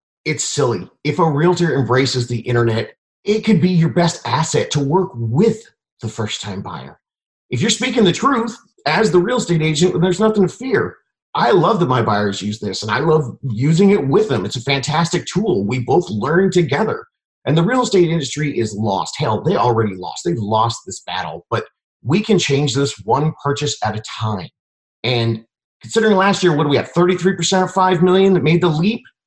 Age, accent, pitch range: 30-49, American, 120-180 Hz